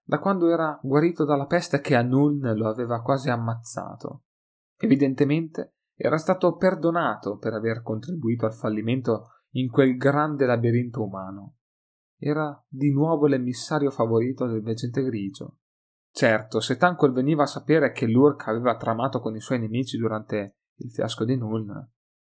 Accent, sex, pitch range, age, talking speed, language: native, male, 110-145 Hz, 30-49, 145 wpm, Italian